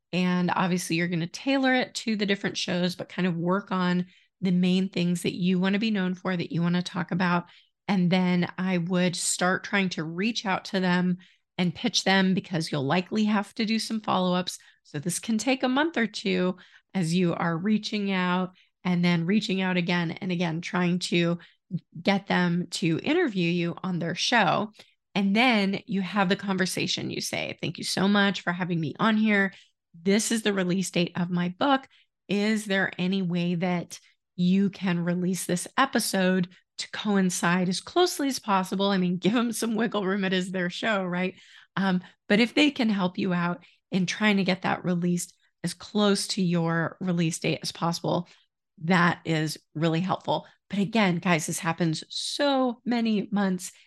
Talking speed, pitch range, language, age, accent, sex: 190 wpm, 175-205 Hz, English, 30-49, American, female